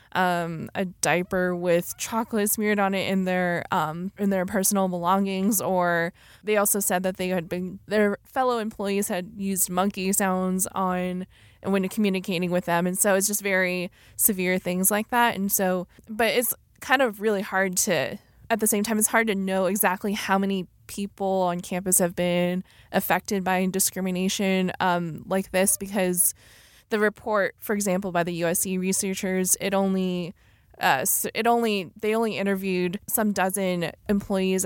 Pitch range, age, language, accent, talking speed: 180-200 Hz, 20-39, English, American, 165 wpm